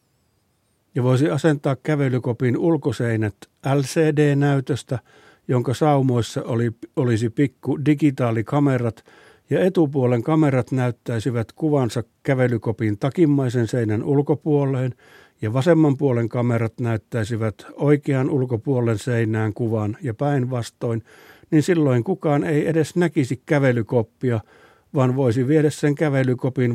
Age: 60-79